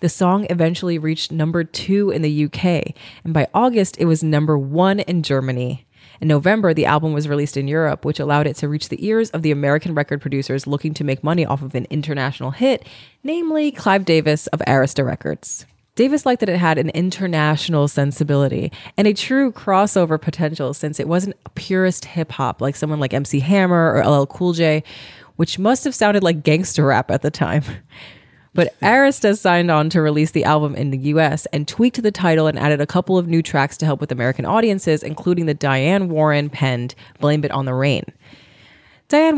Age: 20-39